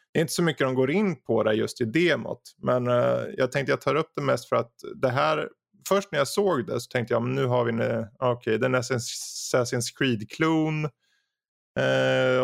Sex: male